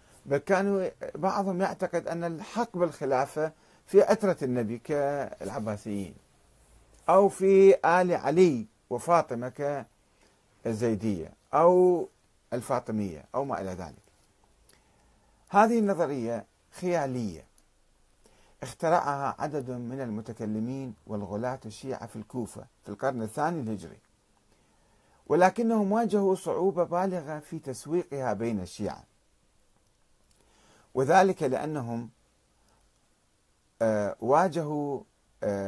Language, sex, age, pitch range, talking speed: Arabic, male, 50-69, 110-170 Hz, 80 wpm